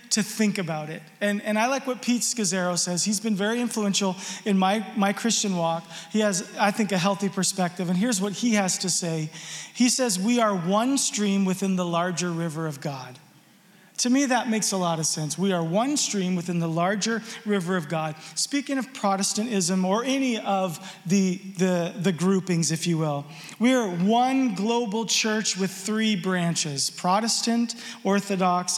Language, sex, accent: English, male, American